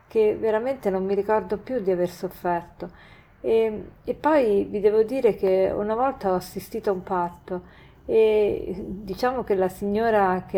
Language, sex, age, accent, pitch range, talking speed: Italian, female, 40-59, native, 185-245 Hz, 165 wpm